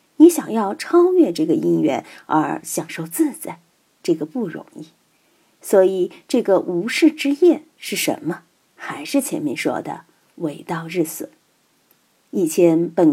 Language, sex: Chinese, female